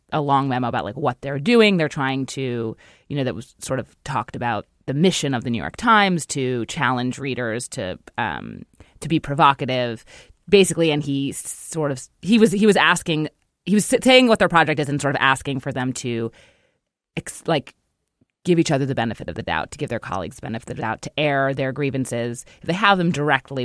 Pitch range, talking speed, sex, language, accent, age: 135-200 Hz, 215 wpm, female, English, American, 30-49